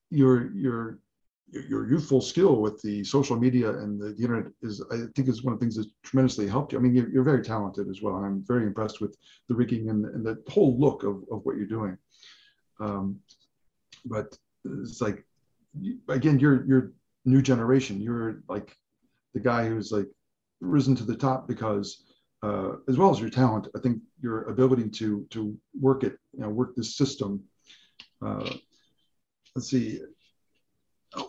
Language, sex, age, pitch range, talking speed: English, male, 40-59, 115-140 Hz, 175 wpm